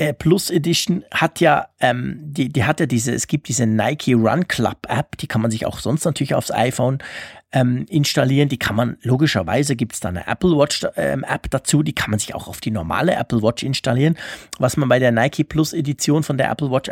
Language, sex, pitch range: German, male, 120-150 Hz